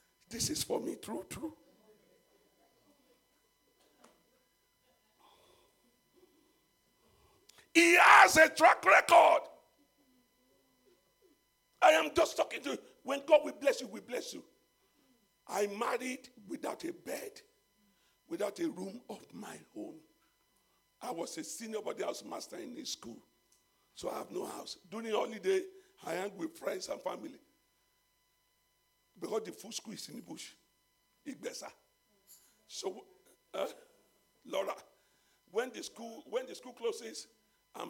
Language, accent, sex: English, Nigerian, male